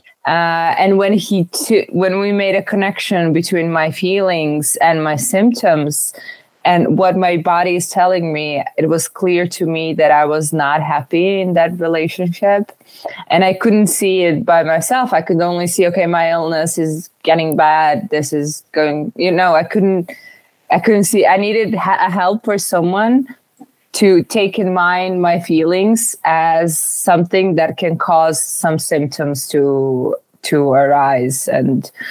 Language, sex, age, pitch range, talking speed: English, female, 20-39, 150-185 Hz, 160 wpm